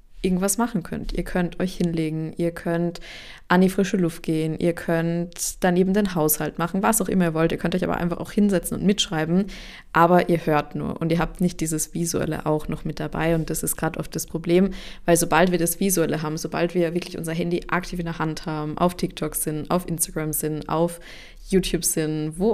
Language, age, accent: German, 20-39, German